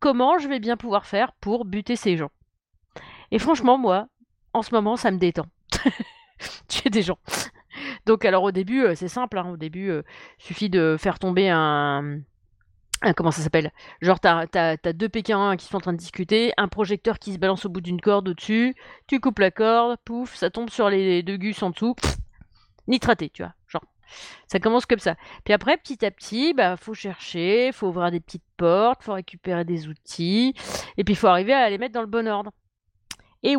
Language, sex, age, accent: French, female, 30-49, French